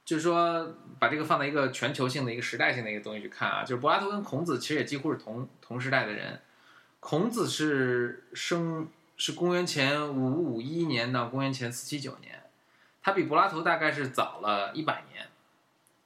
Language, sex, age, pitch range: Chinese, male, 20-39, 120-155 Hz